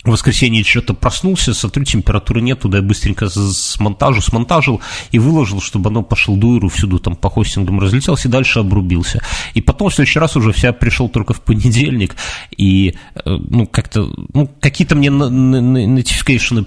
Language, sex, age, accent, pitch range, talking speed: Russian, male, 30-49, native, 100-125 Hz, 160 wpm